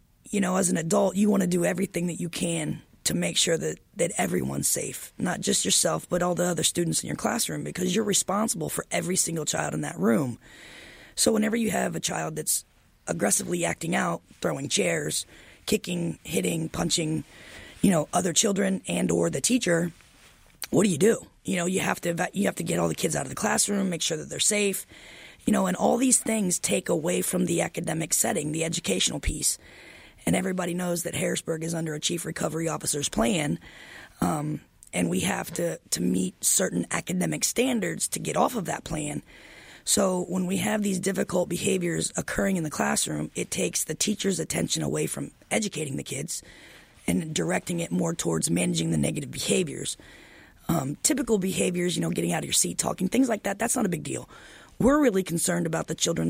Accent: American